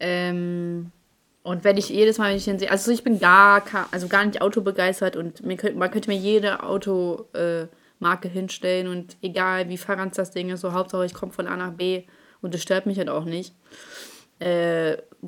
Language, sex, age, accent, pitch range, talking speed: German, female, 20-39, German, 180-225 Hz, 205 wpm